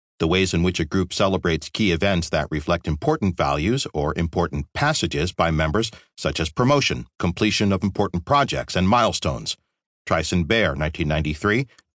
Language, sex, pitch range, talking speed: English, male, 80-110 Hz, 150 wpm